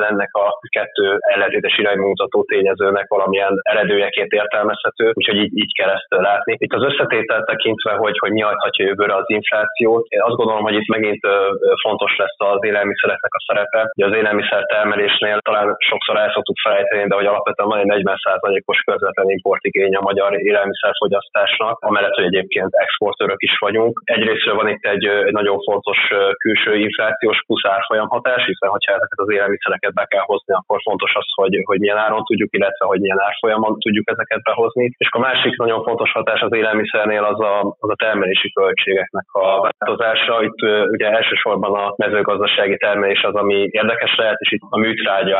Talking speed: 165 wpm